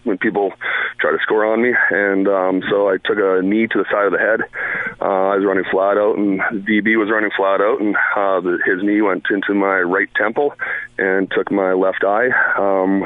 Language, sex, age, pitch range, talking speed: English, male, 30-49, 100-115 Hz, 220 wpm